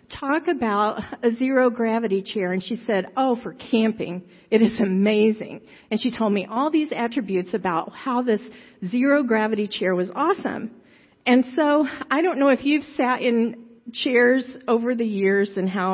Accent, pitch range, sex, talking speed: American, 205-270 Hz, female, 160 wpm